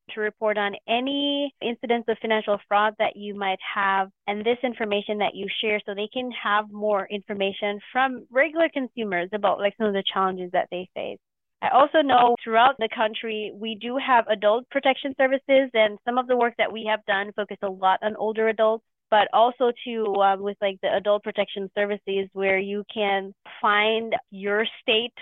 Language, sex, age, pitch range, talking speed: English, female, 20-39, 195-235 Hz, 190 wpm